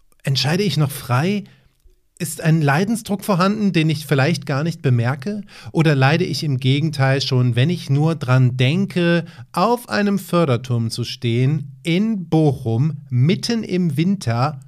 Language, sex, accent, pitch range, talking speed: German, male, German, 130-180 Hz, 145 wpm